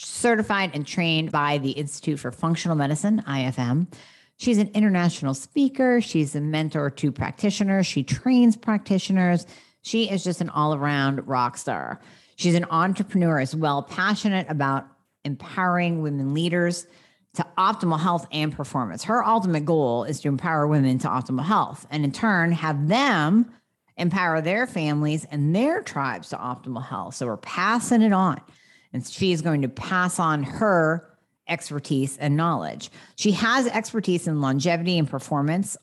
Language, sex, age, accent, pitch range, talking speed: English, female, 50-69, American, 145-200 Hz, 150 wpm